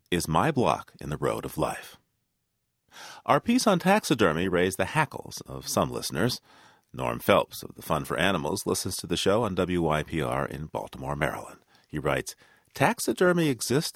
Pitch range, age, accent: 85-125 Hz, 40-59, American